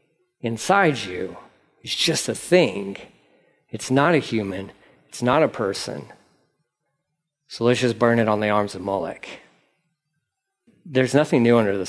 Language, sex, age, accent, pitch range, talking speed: English, male, 50-69, American, 115-150 Hz, 145 wpm